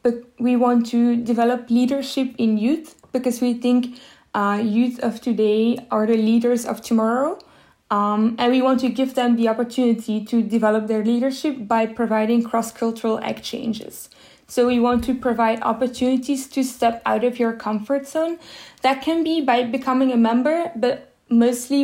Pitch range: 225-260 Hz